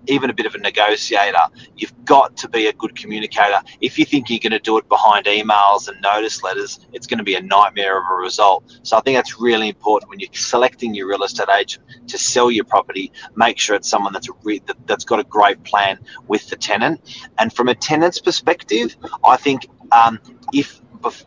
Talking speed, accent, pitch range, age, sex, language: 215 wpm, Australian, 110-170 Hz, 30-49, male, English